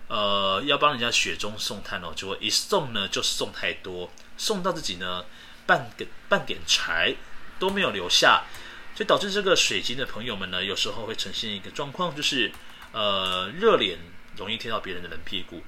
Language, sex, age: Chinese, male, 30-49